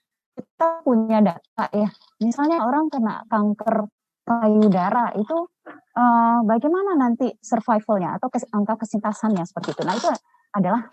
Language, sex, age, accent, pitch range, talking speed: Indonesian, female, 20-39, native, 195-265 Hz, 120 wpm